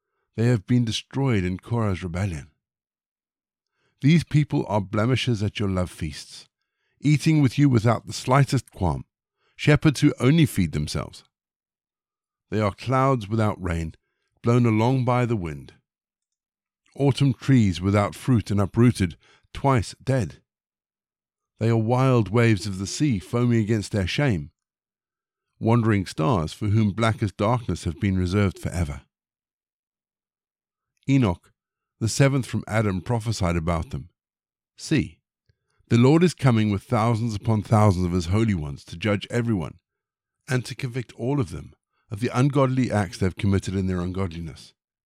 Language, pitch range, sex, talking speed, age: English, 95-125 Hz, male, 145 wpm, 50-69